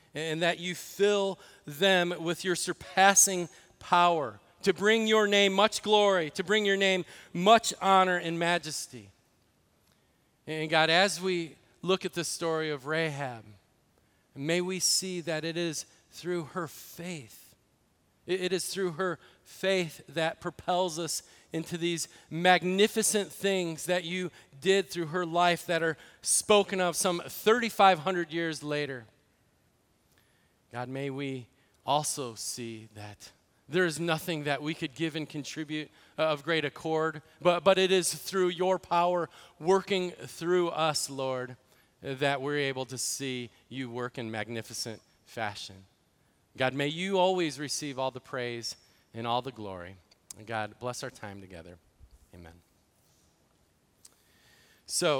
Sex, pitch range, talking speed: male, 130-180 Hz, 140 wpm